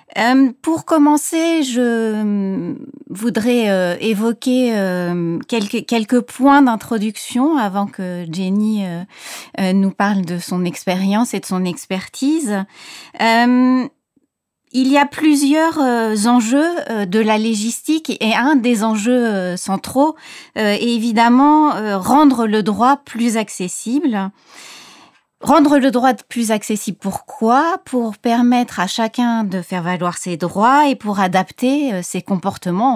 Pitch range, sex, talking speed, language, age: 185-255 Hz, female, 125 wpm, French, 30-49